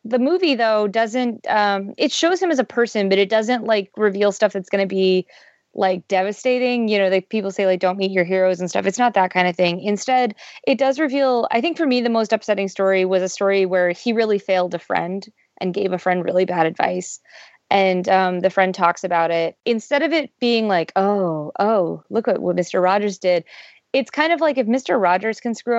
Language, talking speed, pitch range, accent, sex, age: English, 225 wpm, 185-225 Hz, American, female, 20-39